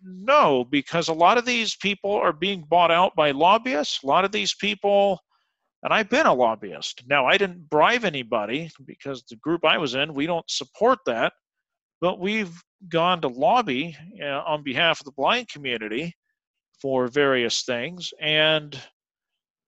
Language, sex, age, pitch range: English, male, 40-59, 140-185 Hz